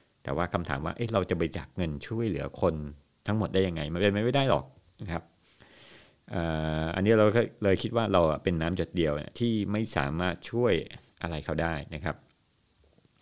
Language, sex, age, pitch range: Thai, male, 60-79, 80-105 Hz